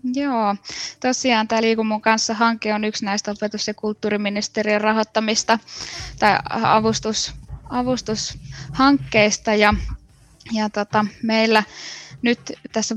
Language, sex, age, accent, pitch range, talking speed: Finnish, female, 10-29, native, 210-230 Hz, 100 wpm